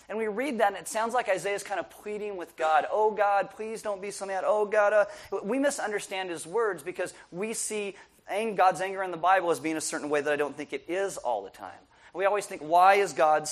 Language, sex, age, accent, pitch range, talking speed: English, male, 30-49, American, 160-205 Hz, 255 wpm